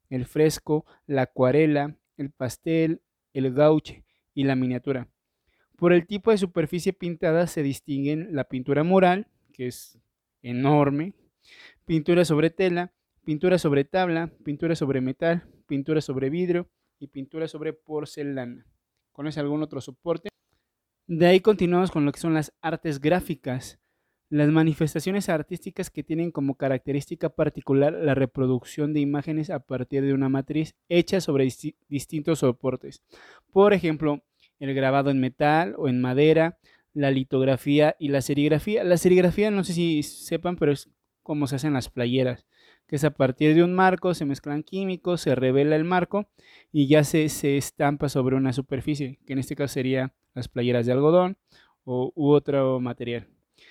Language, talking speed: Spanish, 155 wpm